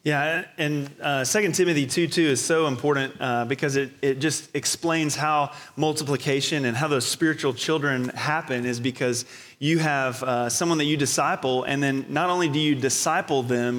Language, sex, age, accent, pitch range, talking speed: English, male, 30-49, American, 130-150 Hz, 180 wpm